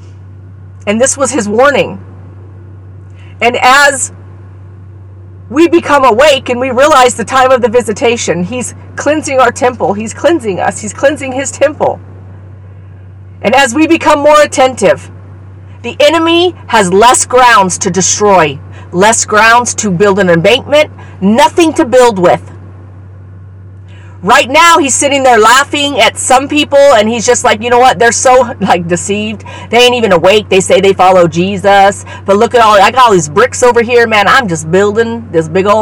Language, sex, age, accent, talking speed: English, female, 50-69, American, 165 wpm